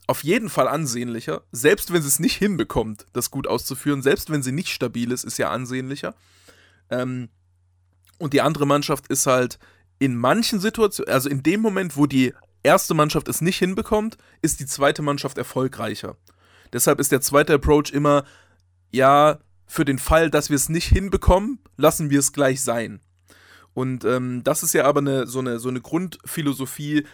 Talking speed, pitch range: 170 wpm, 120-150 Hz